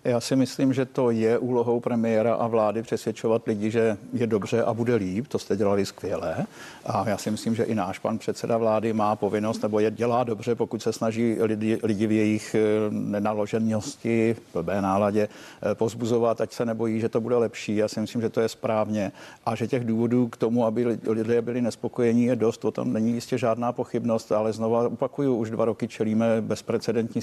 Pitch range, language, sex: 110-120 Hz, Czech, male